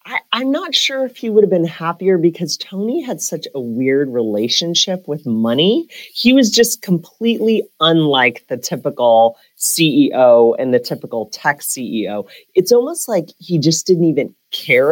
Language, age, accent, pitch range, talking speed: English, 30-49, American, 130-195 Hz, 160 wpm